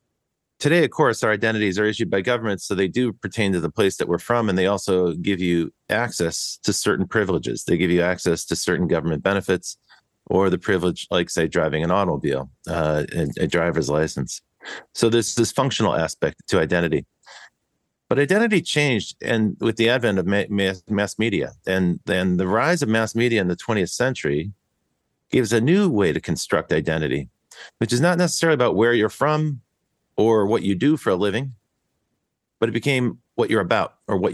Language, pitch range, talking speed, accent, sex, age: English, 90-115 Hz, 190 wpm, American, male, 40-59